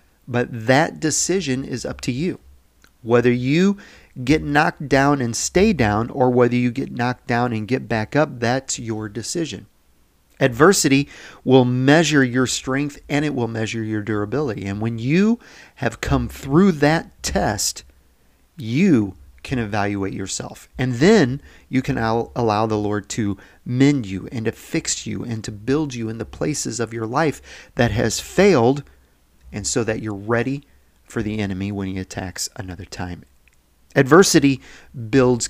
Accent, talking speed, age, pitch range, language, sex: American, 155 wpm, 40-59, 110-140 Hz, English, male